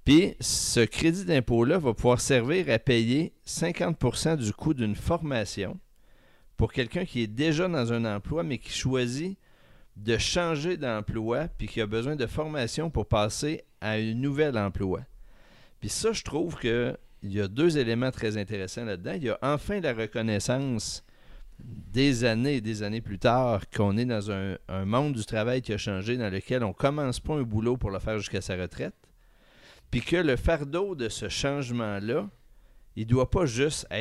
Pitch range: 105-135 Hz